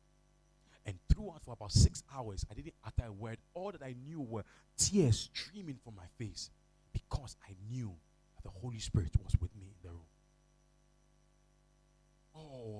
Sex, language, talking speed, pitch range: male, English, 165 wpm, 95-125 Hz